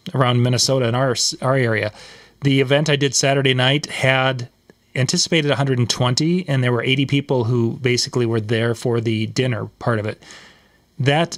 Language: English